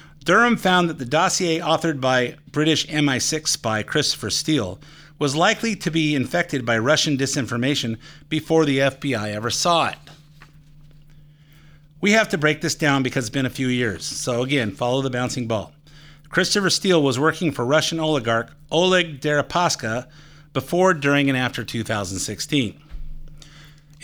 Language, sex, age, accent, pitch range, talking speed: English, male, 50-69, American, 130-155 Hz, 145 wpm